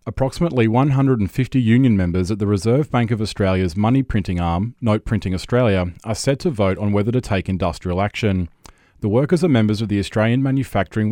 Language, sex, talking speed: English, male, 180 wpm